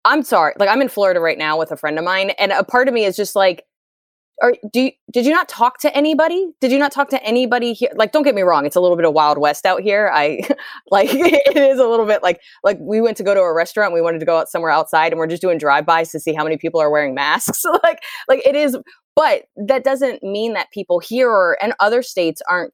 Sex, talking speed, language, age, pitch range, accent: female, 270 wpm, English, 20-39, 175-270 Hz, American